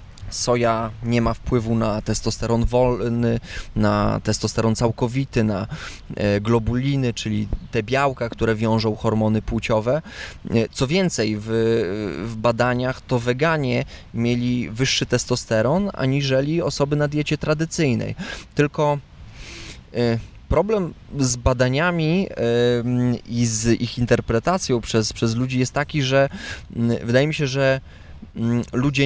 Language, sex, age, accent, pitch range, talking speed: Polish, male, 20-39, native, 110-130 Hz, 110 wpm